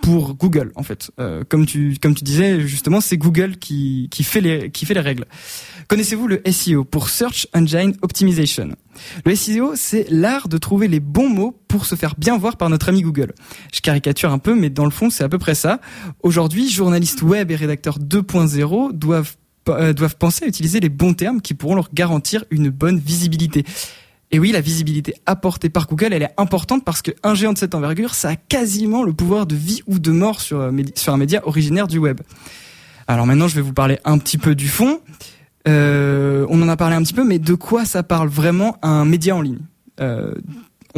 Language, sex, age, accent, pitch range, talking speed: French, male, 20-39, French, 150-190 Hz, 210 wpm